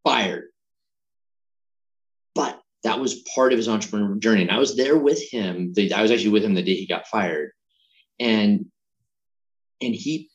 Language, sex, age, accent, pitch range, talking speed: English, male, 30-49, American, 100-145 Hz, 160 wpm